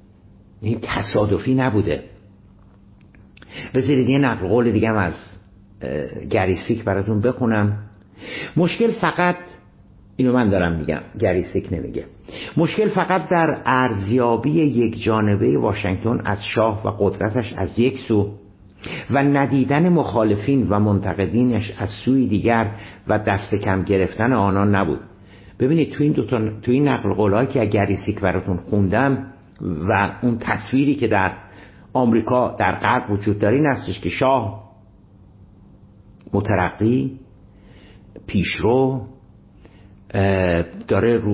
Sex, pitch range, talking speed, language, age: male, 100-125 Hz, 110 wpm, Persian, 50-69